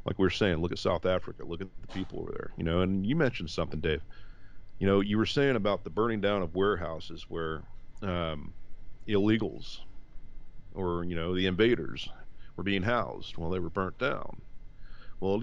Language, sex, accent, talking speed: English, male, American, 190 wpm